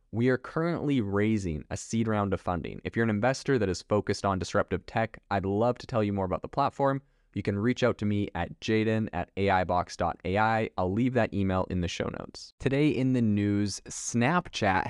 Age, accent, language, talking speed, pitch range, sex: 20-39, American, English, 205 wpm, 95-115 Hz, male